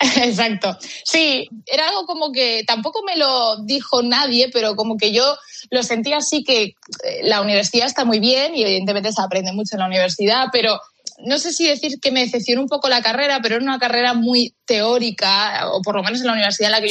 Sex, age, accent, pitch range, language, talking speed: female, 20-39, Spanish, 200-245 Hz, Spanish, 215 wpm